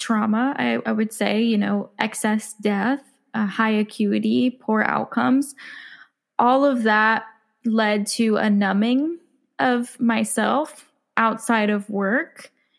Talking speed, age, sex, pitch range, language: 120 wpm, 10-29, female, 210-235 Hz, English